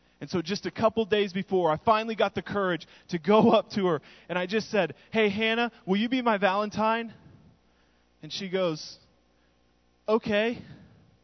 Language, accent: English, American